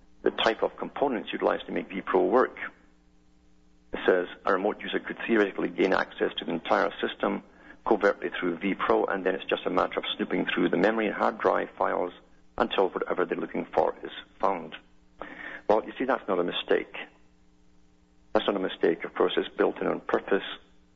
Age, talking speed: 50-69, 185 wpm